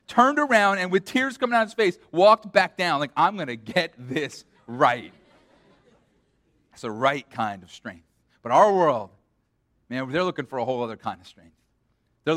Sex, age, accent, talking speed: male, 30-49, American, 195 wpm